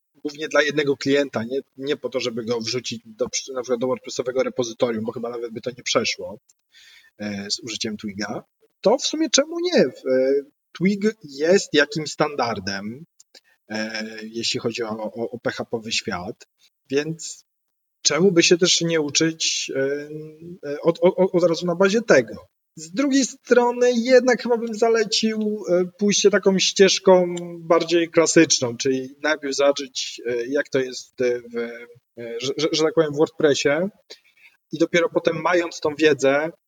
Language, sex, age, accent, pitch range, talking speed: Polish, male, 30-49, native, 130-175 Hz, 140 wpm